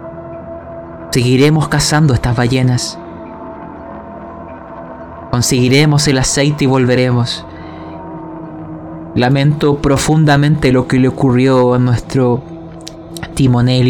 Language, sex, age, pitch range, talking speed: Spanish, male, 20-39, 120-160 Hz, 80 wpm